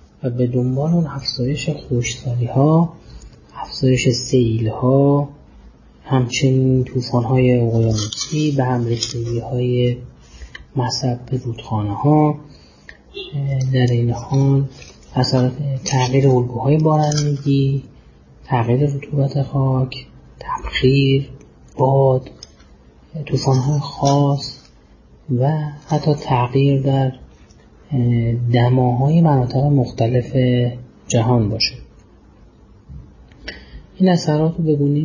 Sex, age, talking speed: male, 30-49, 75 wpm